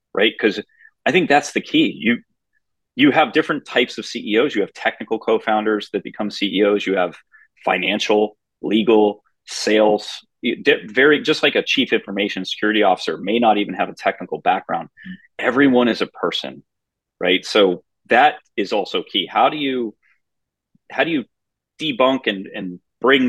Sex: male